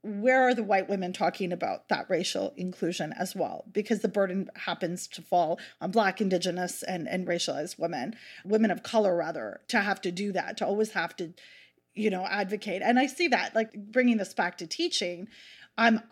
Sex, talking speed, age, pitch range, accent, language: female, 195 wpm, 30-49, 185-230 Hz, American, English